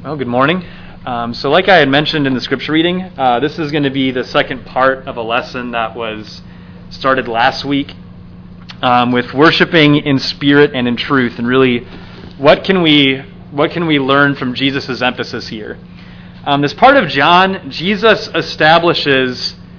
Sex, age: male, 30-49